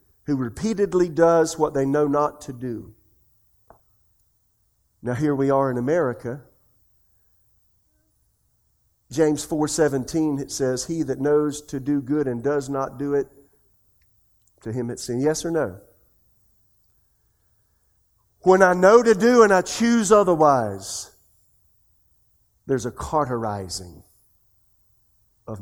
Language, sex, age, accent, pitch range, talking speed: English, male, 50-69, American, 105-165 Hz, 115 wpm